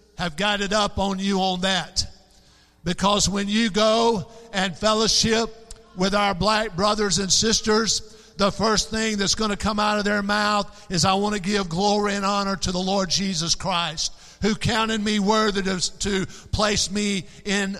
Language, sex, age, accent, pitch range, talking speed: English, male, 50-69, American, 185-220 Hz, 170 wpm